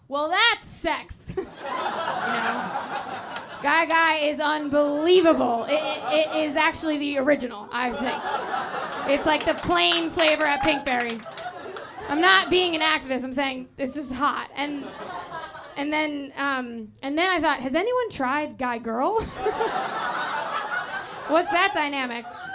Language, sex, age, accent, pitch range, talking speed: English, female, 10-29, American, 250-310 Hz, 135 wpm